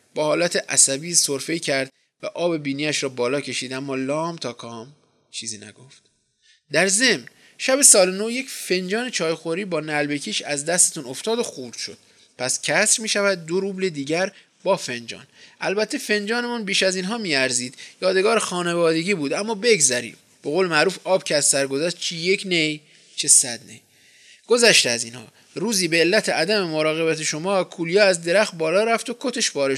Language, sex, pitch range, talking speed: Persian, male, 140-210 Hz, 170 wpm